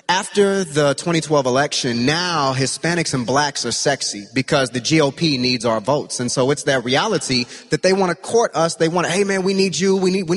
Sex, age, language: male, 20-39, English